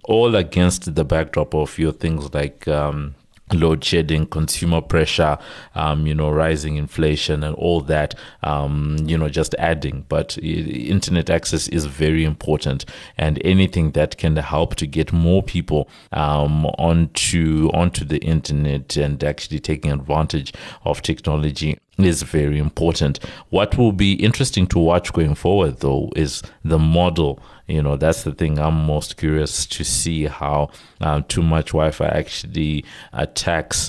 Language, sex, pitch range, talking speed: English, male, 75-80 Hz, 150 wpm